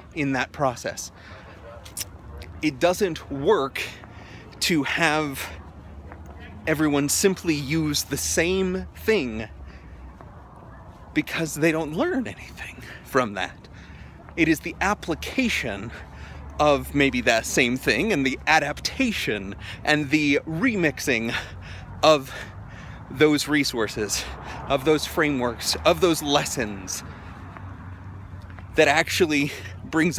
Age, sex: 30-49, male